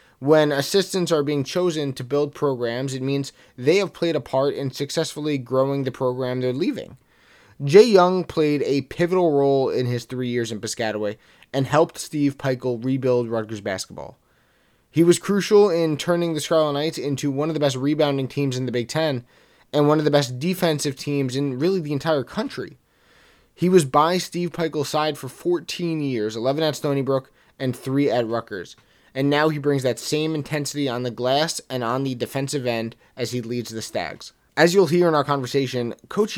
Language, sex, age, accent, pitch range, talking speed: English, male, 20-39, American, 130-160 Hz, 190 wpm